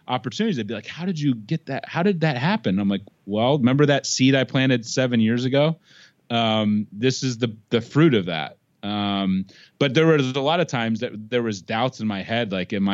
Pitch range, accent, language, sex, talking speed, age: 105-130 Hz, American, English, male, 225 wpm, 30-49